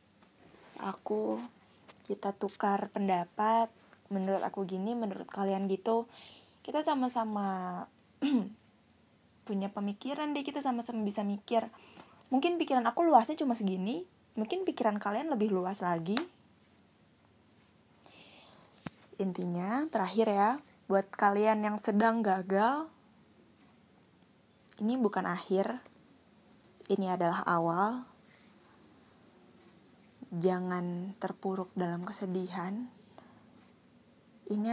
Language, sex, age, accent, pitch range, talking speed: Indonesian, female, 10-29, native, 185-230 Hz, 85 wpm